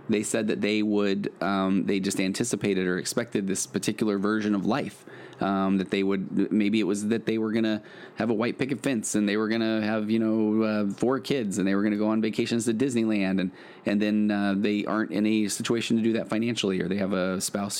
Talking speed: 235 wpm